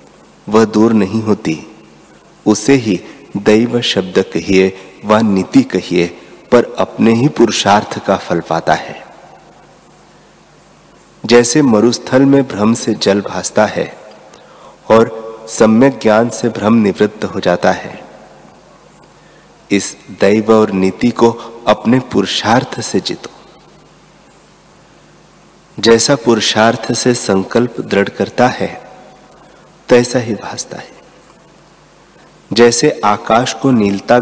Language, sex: Hindi, male